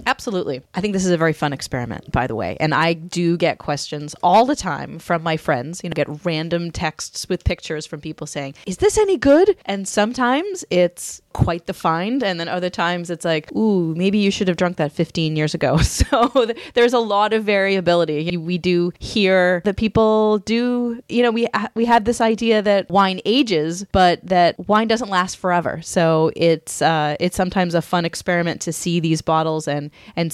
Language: English